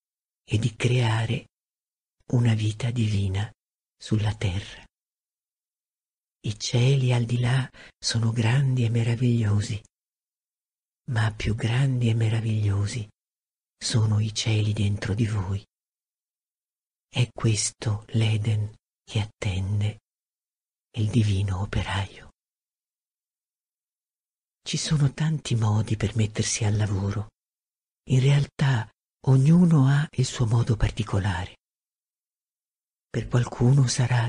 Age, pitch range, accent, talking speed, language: 50-69, 110-125 Hz, native, 95 wpm, Italian